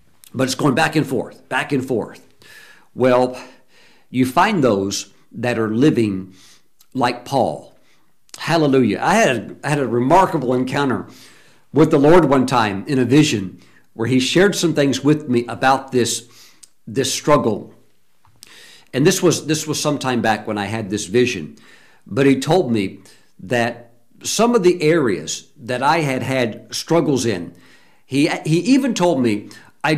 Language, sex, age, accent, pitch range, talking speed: English, male, 50-69, American, 120-160 Hz, 160 wpm